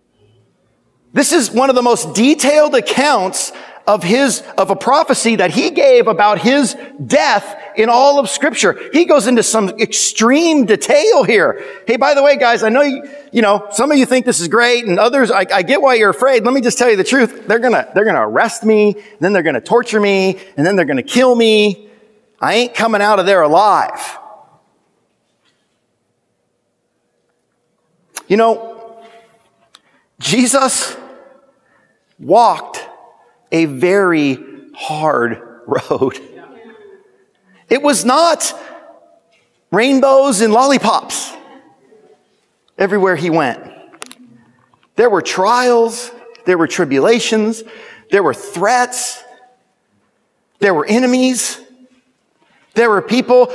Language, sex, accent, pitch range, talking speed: English, male, American, 210-270 Hz, 135 wpm